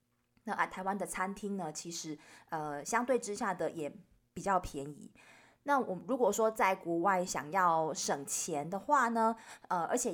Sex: female